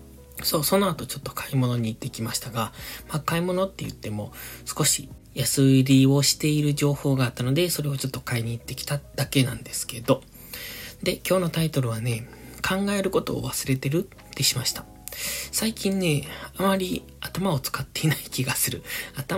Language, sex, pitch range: Japanese, male, 115-145 Hz